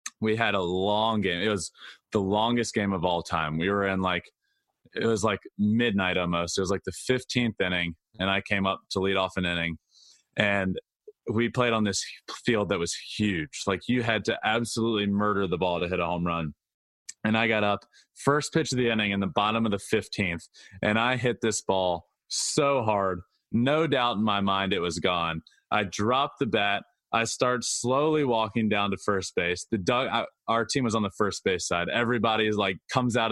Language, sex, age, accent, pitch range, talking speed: English, male, 20-39, American, 95-120 Hz, 210 wpm